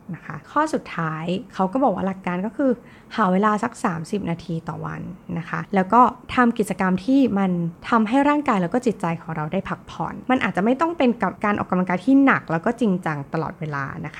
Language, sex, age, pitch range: Thai, female, 20-39, 170-230 Hz